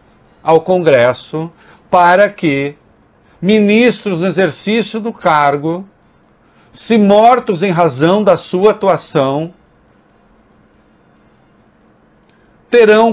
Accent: Brazilian